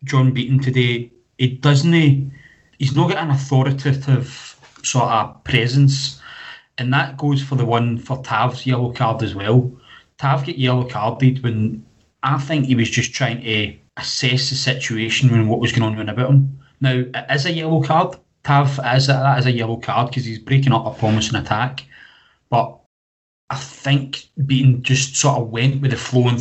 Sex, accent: male, British